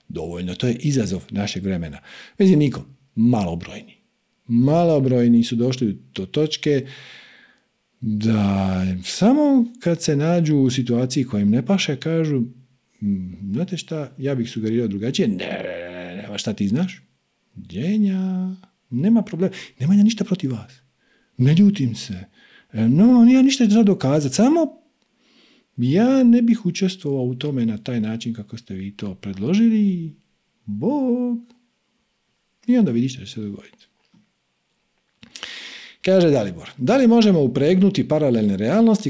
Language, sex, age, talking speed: Croatian, male, 50-69, 135 wpm